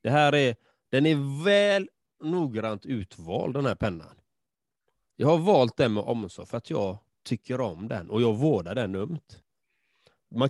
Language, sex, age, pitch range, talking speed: Swedish, male, 30-49, 105-150 Hz, 165 wpm